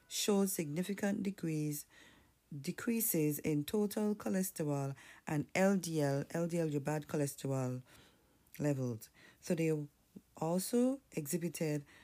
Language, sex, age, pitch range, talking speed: English, female, 40-59, 150-190 Hz, 85 wpm